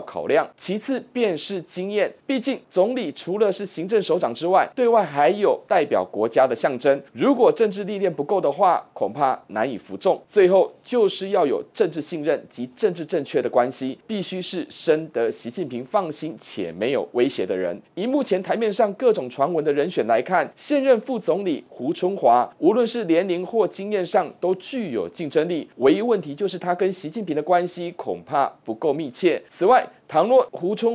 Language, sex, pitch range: Chinese, male, 170-240 Hz